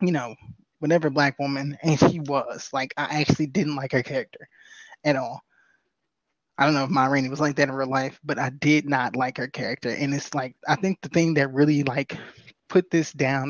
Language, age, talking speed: English, 20-39, 215 wpm